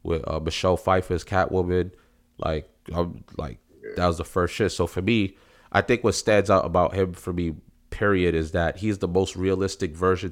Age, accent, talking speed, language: 30-49, American, 200 wpm, English